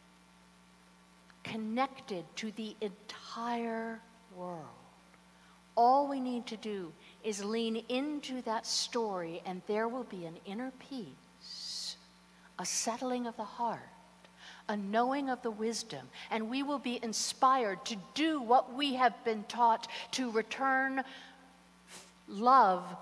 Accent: American